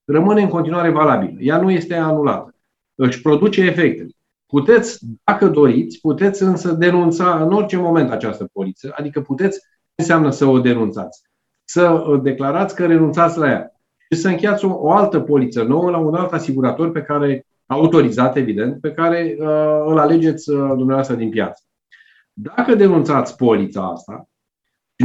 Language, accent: Romanian, native